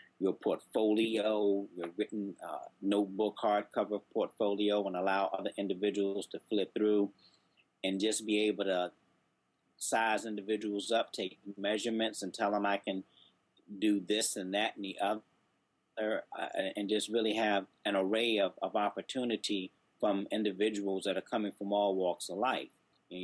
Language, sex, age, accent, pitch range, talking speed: English, male, 40-59, American, 95-110 Hz, 150 wpm